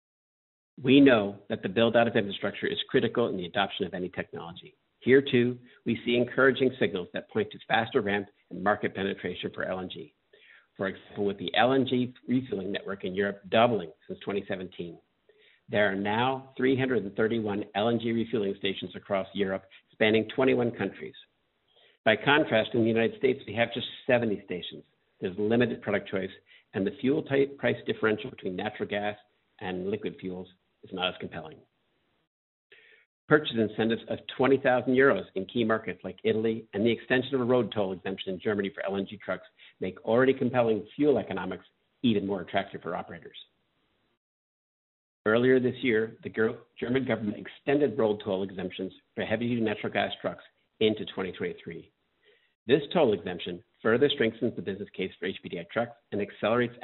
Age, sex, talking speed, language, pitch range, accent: 60-79, male, 155 wpm, English, 105-130 Hz, American